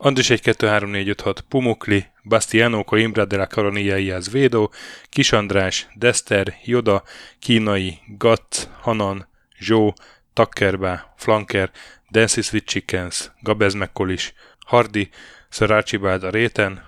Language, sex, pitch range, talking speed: Hungarian, male, 95-115 Hz, 90 wpm